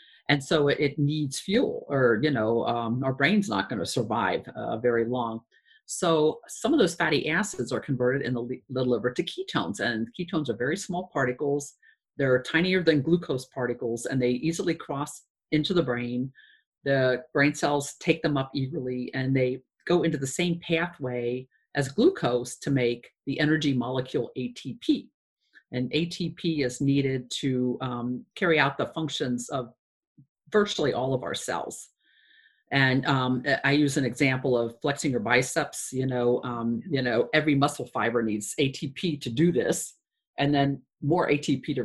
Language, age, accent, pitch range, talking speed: English, 50-69, American, 125-160 Hz, 165 wpm